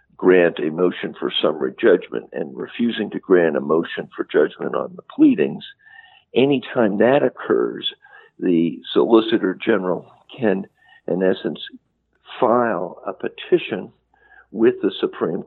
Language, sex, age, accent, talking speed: English, male, 50-69, American, 130 wpm